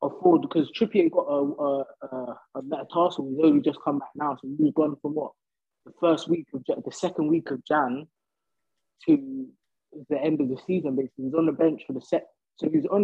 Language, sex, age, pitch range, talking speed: English, male, 20-39, 140-185 Hz, 210 wpm